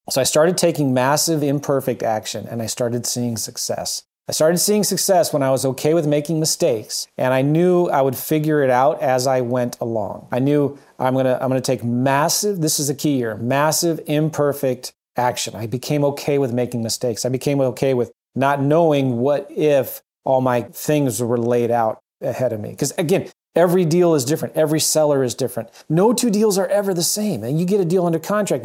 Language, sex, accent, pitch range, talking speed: English, male, American, 125-150 Hz, 205 wpm